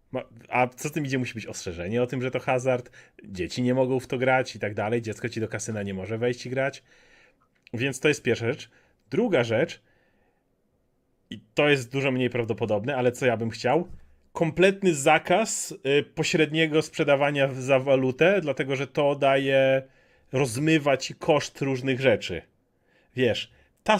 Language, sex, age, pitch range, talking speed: Polish, male, 30-49, 125-165 Hz, 165 wpm